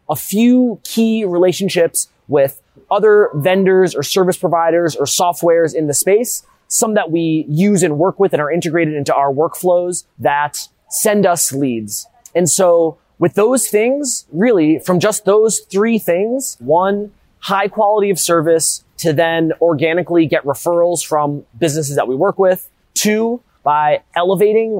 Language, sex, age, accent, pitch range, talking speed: English, male, 30-49, American, 150-195 Hz, 150 wpm